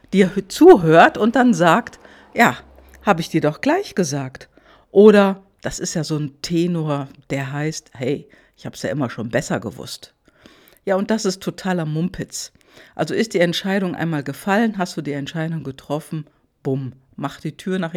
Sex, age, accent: female, 50-69, German